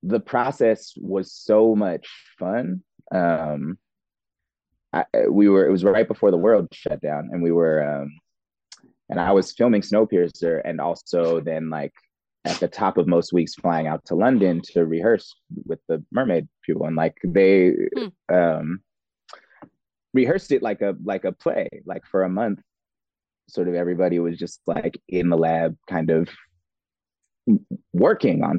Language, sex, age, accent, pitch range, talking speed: English, male, 30-49, American, 85-115 Hz, 155 wpm